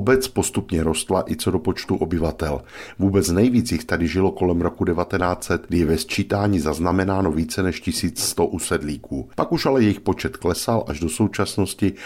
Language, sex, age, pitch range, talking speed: Czech, male, 50-69, 85-105 Hz, 170 wpm